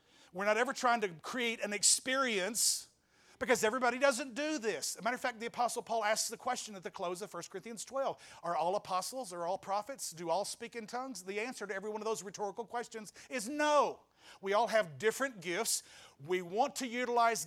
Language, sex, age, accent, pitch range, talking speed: English, male, 50-69, American, 175-235 Hz, 215 wpm